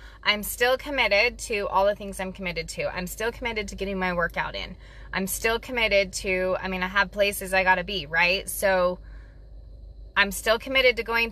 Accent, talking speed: American, 195 wpm